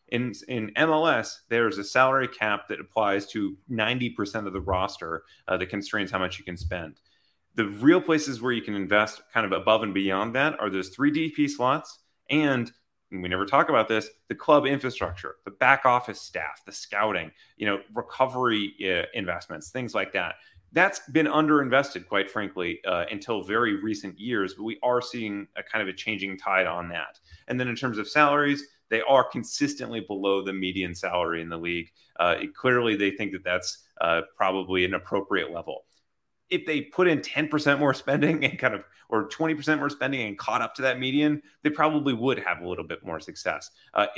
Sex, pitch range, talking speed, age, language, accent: male, 95-135 Hz, 195 wpm, 30-49, English, American